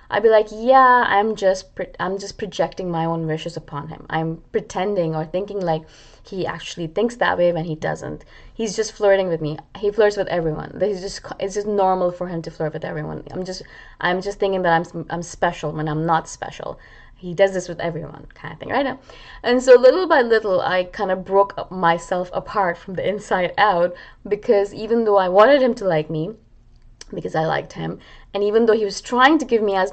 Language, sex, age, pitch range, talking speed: English, female, 20-39, 165-205 Hz, 220 wpm